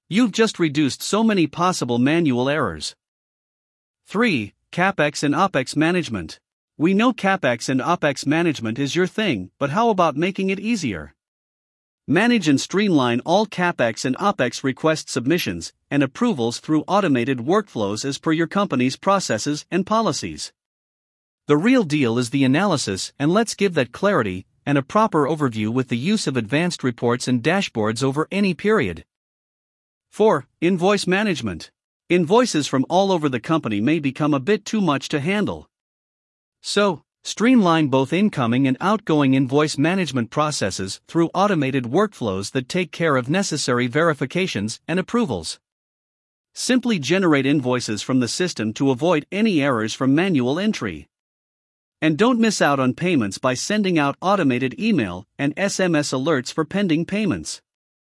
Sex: male